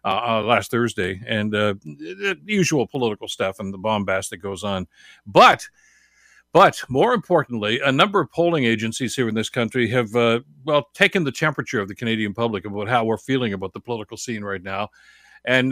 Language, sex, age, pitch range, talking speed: English, male, 60-79, 110-140 Hz, 190 wpm